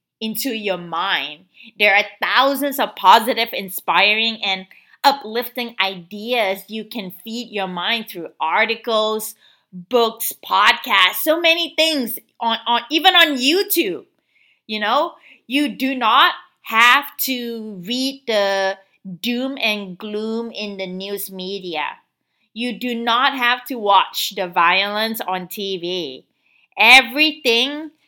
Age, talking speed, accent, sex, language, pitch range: 30-49, 120 wpm, American, female, English, 210-285 Hz